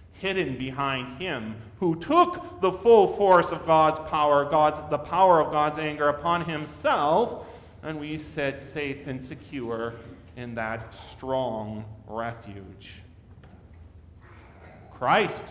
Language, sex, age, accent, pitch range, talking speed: English, male, 40-59, American, 110-165 Hz, 115 wpm